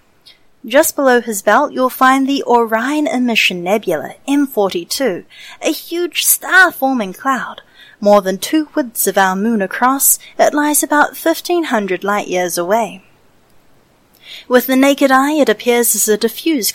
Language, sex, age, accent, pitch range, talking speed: English, female, 30-49, Australian, 220-290 Hz, 135 wpm